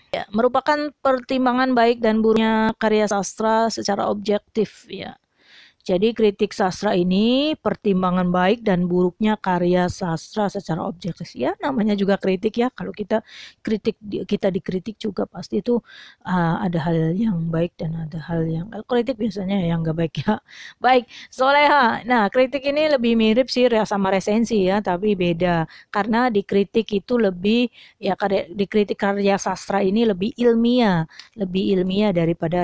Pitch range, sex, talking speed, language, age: 190-245 Hz, female, 145 wpm, Indonesian, 30-49